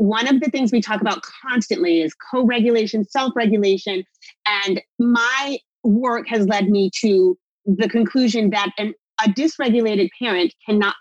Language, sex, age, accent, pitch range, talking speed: English, female, 30-49, American, 195-245 Hz, 135 wpm